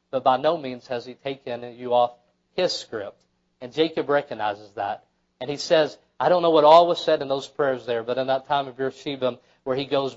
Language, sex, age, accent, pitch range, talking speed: English, male, 40-59, American, 125-160 Hz, 225 wpm